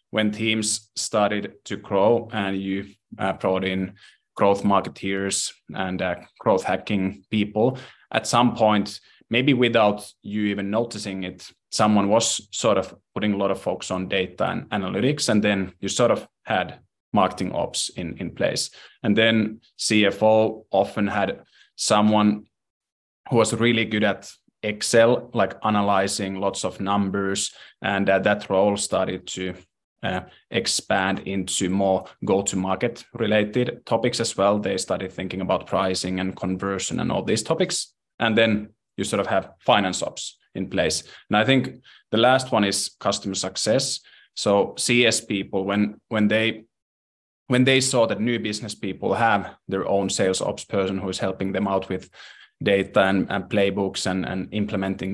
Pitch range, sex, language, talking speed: 95-110 Hz, male, English, 155 wpm